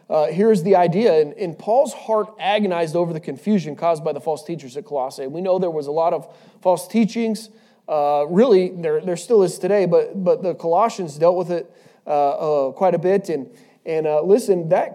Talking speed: 215 wpm